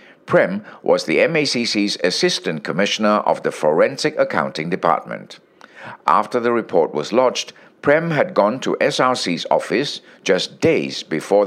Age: 60-79